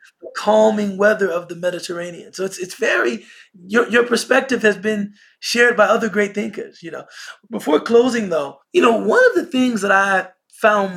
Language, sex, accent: English, male, American